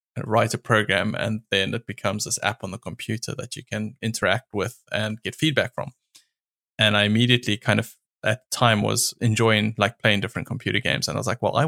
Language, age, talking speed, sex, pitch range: English, 20-39, 210 wpm, male, 105-120 Hz